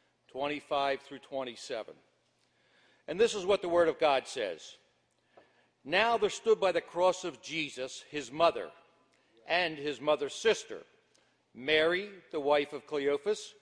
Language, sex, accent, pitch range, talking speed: English, male, American, 150-195 Hz, 135 wpm